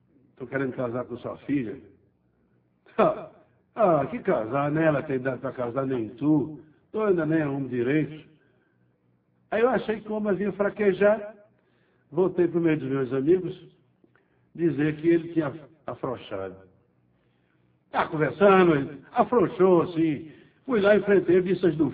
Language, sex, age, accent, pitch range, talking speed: Portuguese, male, 60-79, Brazilian, 125-185 Hz, 150 wpm